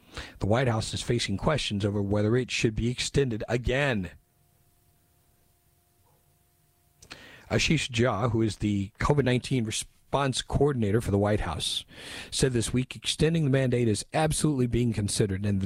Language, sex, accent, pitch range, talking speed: English, male, American, 100-125 Hz, 140 wpm